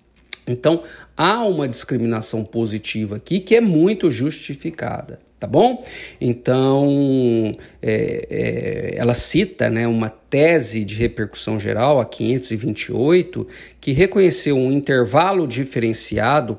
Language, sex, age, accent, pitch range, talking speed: Portuguese, male, 50-69, Brazilian, 115-160 Hz, 110 wpm